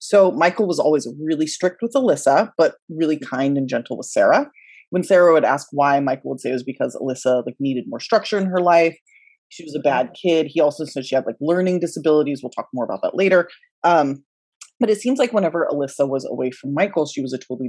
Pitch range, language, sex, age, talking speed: 135-195 Hz, English, female, 30-49, 230 wpm